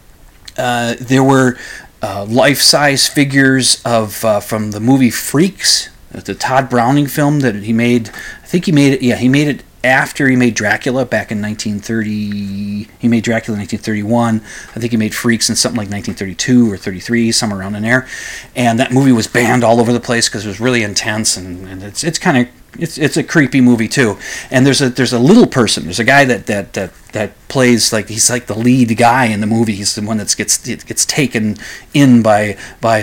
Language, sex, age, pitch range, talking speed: English, male, 30-49, 110-135 Hz, 210 wpm